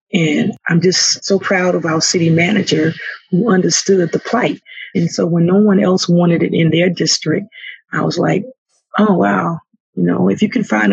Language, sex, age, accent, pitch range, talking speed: English, female, 40-59, American, 165-205 Hz, 190 wpm